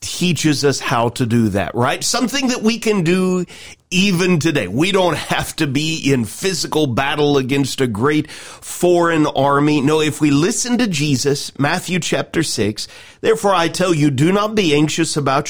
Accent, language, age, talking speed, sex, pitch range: American, English, 40-59, 175 wpm, male, 140-195 Hz